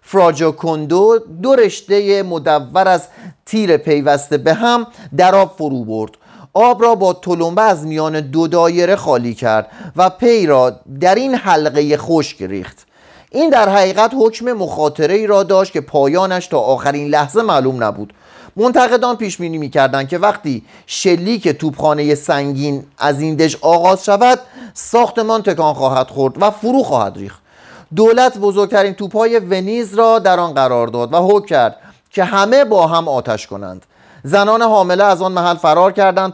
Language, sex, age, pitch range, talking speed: Persian, male, 40-59, 150-205 Hz, 160 wpm